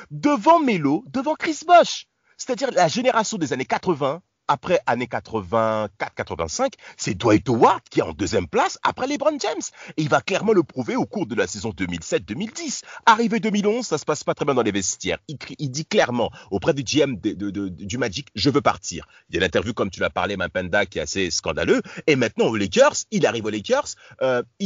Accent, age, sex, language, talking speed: French, 40-59, male, French, 215 wpm